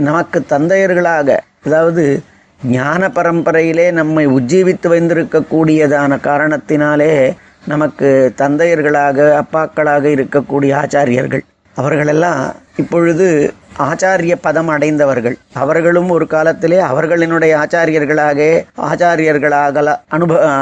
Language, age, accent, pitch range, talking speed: Tamil, 30-49, native, 145-170 Hz, 75 wpm